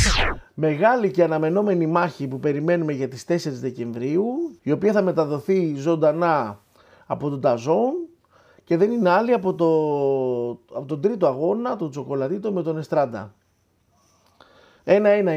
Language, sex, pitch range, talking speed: Greek, male, 130-180 Hz, 135 wpm